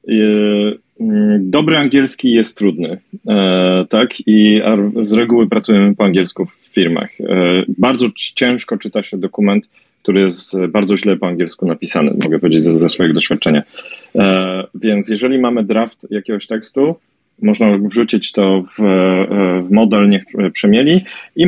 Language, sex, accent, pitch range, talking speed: Polish, male, native, 95-115 Hz, 130 wpm